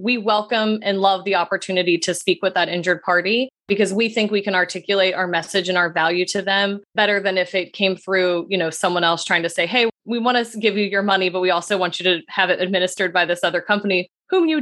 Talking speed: 250 wpm